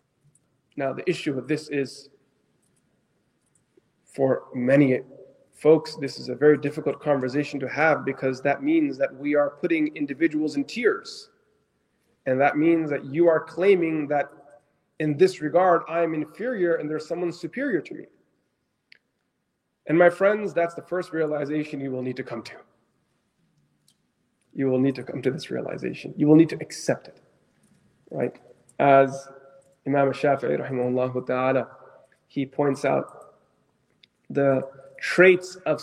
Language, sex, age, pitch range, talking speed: English, male, 20-39, 135-165 Hz, 140 wpm